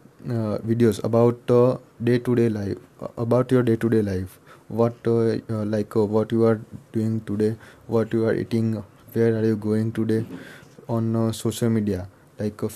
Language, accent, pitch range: English, Indian, 110-120 Hz